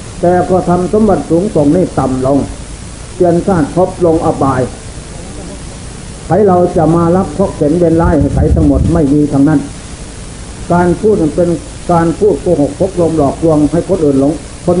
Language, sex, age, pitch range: Thai, male, 60-79, 150-185 Hz